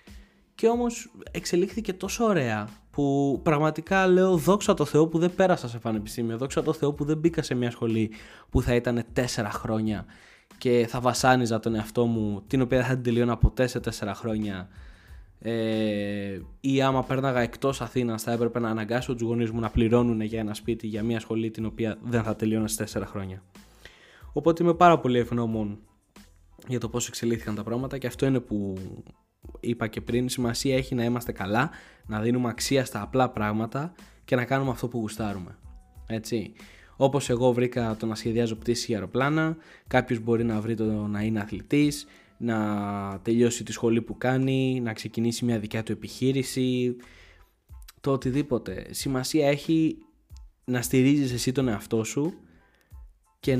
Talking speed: 170 wpm